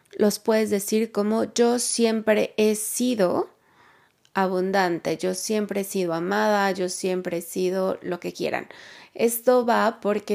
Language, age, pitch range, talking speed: Spanish, 20-39, 190-230 Hz, 140 wpm